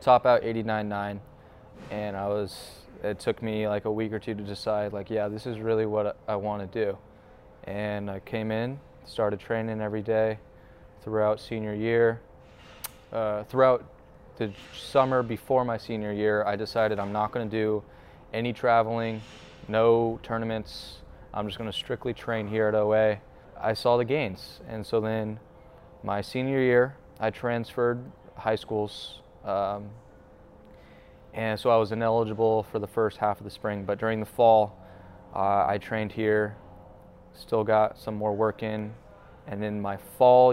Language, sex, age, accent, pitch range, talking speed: English, male, 20-39, American, 105-115 Hz, 160 wpm